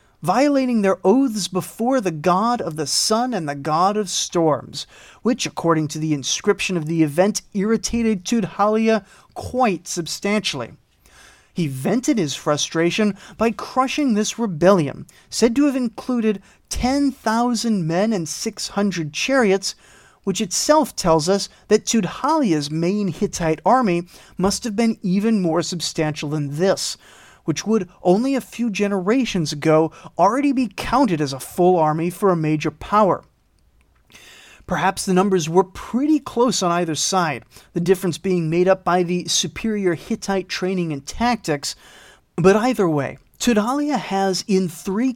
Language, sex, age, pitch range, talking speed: English, male, 30-49, 165-225 Hz, 140 wpm